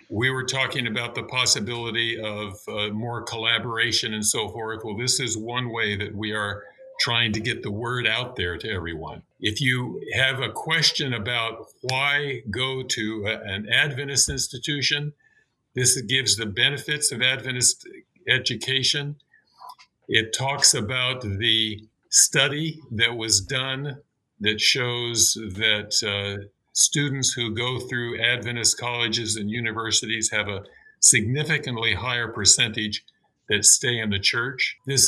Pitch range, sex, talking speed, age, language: 110-130 Hz, male, 135 wpm, 50-69, English